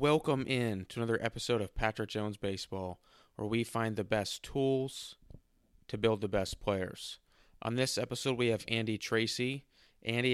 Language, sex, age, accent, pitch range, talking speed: English, male, 20-39, American, 100-115 Hz, 165 wpm